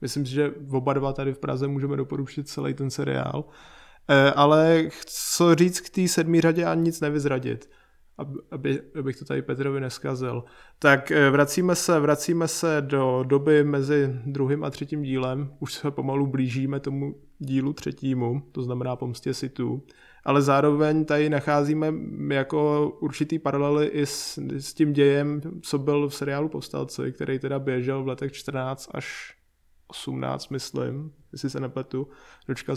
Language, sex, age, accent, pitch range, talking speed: Czech, male, 20-39, native, 135-150 Hz, 150 wpm